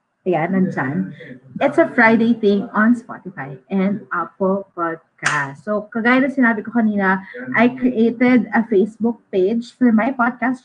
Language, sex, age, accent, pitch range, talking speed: English, female, 20-39, Filipino, 180-235 Hz, 140 wpm